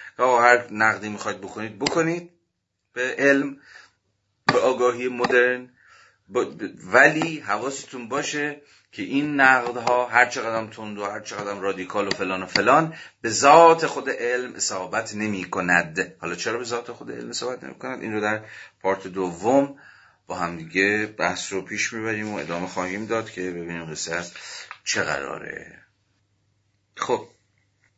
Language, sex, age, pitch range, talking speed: Persian, male, 30-49, 90-110 Hz, 150 wpm